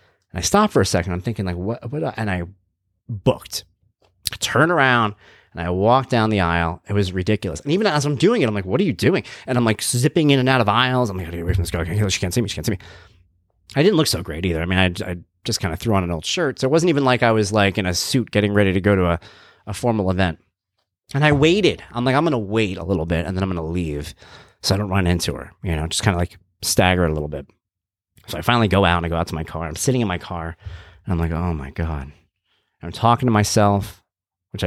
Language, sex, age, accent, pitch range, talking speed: English, male, 30-49, American, 90-110 Hz, 280 wpm